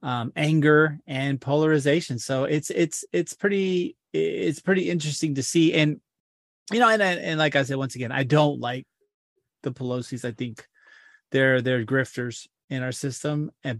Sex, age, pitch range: male, 30-49, 125-155 Hz